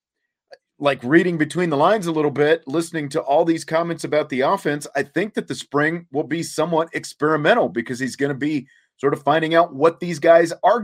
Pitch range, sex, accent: 110-155 Hz, male, American